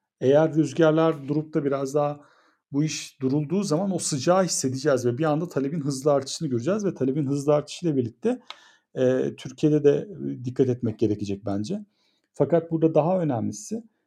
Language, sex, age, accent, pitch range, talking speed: Turkish, male, 40-59, native, 130-160 Hz, 155 wpm